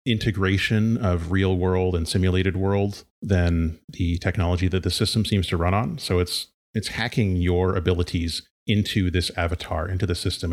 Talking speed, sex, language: 165 wpm, male, English